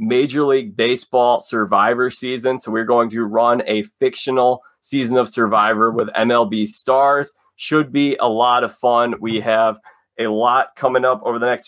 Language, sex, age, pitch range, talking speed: English, male, 20-39, 115-140 Hz, 170 wpm